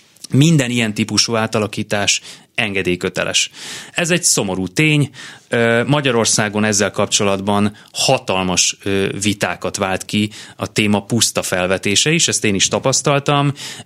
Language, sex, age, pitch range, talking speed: Hungarian, male, 30-49, 100-120 Hz, 110 wpm